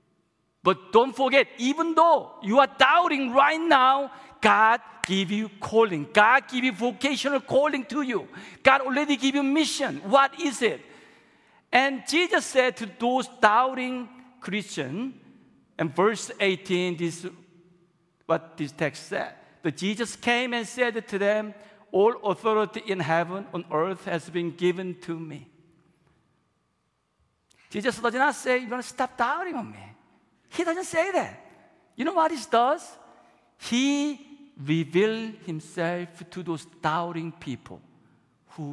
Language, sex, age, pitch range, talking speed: English, male, 50-69, 165-250 Hz, 140 wpm